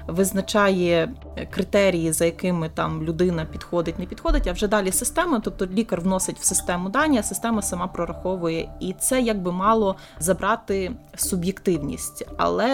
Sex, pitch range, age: female, 180-225 Hz, 20-39